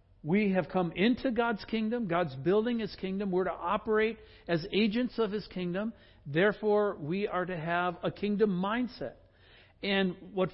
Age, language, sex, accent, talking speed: 60-79, English, male, American, 160 wpm